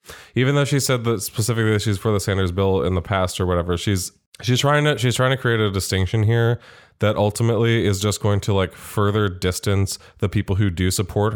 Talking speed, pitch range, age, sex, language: 215 wpm, 90-110 Hz, 20-39, male, English